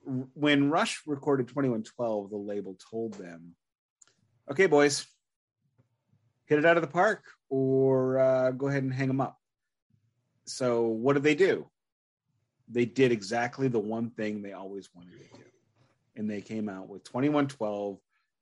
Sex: male